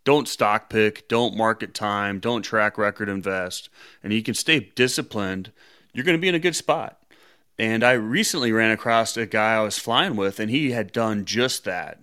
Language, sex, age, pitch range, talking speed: English, male, 30-49, 105-125 Hz, 200 wpm